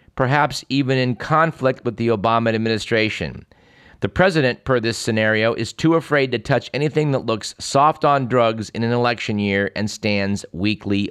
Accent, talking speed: American, 165 wpm